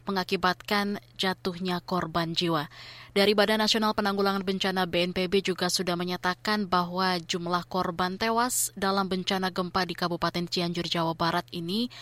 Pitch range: 175-210 Hz